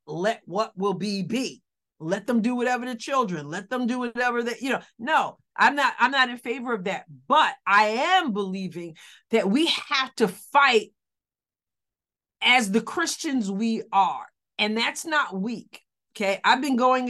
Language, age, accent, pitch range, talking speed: English, 40-59, American, 195-235 Hz, 170 wpm